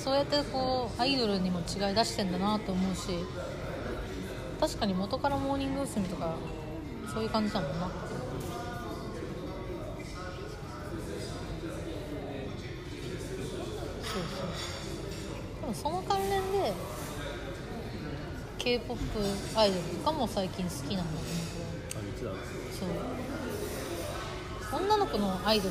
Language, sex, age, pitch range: Japanese, female, 30-49, 185-300 Hz